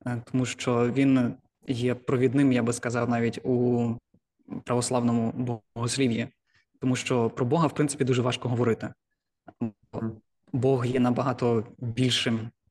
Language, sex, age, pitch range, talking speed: Ukrainian, male, 20-39, 120-130 Hz, 120 wpm